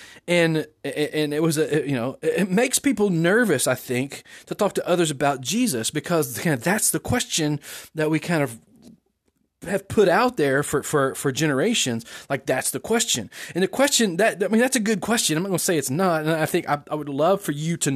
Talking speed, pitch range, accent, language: 215 wpm, 145-205 Hz, American, English